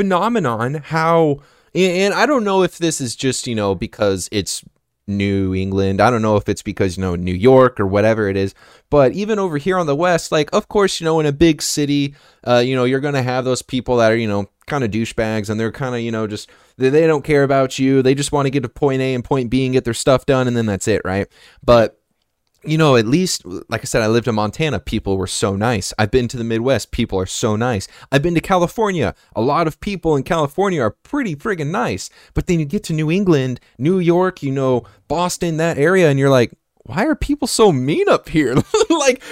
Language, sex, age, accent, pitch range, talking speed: English, male, 20-39, American, 115-170 Hz, 240 wpm